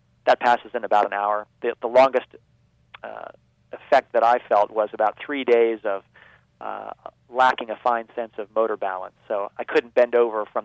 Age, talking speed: 40-59, 185 wpm